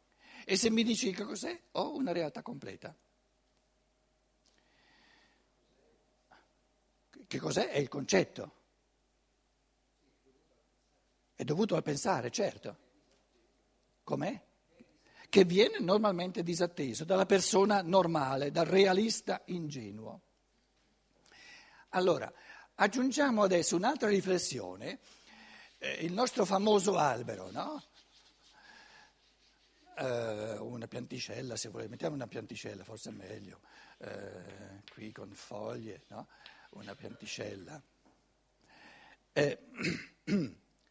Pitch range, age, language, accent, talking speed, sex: 135-220 Hz, 60-79, Italian, native, 85 wpm, male